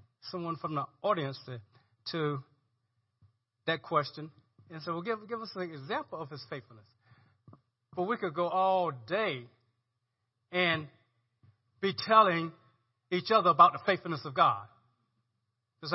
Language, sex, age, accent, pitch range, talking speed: English, male, 40-59, American, 115-175 Hz, 135 wpm